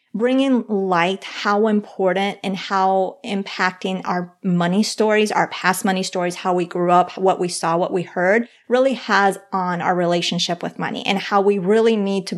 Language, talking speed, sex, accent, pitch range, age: English, 180 wpm, female, American, 180-220 Hz, 30-49